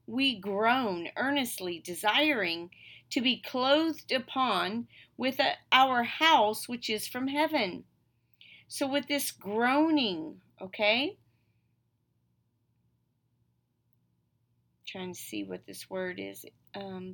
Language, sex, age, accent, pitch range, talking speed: English, female, 40-59, American, 195-260 Hz, 100 wpm